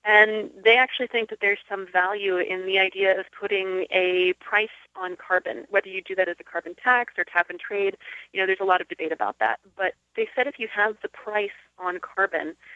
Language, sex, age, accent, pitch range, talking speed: English, female, 30-49, American, 185-250 Hz, 225 wpm